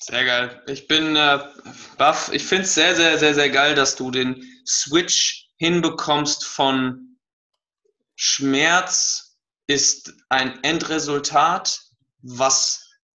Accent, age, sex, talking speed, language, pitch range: German, 20-39, male, 110 wpm, German, 130-155 Hz